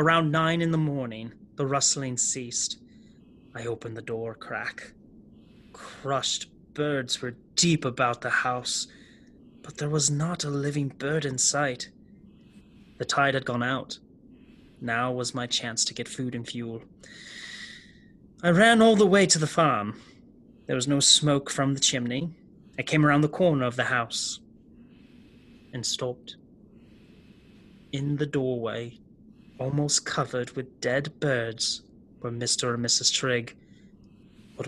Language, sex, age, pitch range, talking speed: English, male, 30-49, 125-165 Hz, 140 wpm